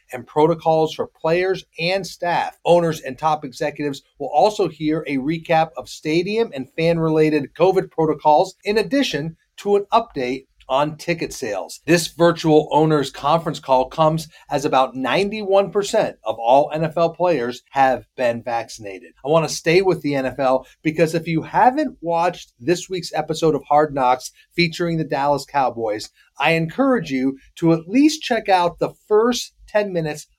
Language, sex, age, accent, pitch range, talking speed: English, male, 30-49, American, 145-175 Hz, 155 wpm